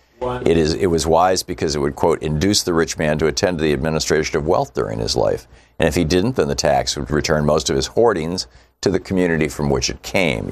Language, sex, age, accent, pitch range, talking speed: English, male, 50-69, American, 65-80 Hz, 245 wpm